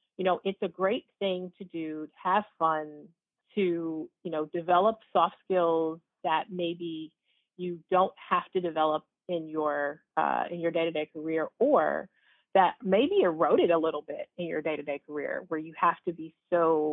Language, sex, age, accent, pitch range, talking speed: English, female, 30-49, American, 160-190 Hz, 180 wpm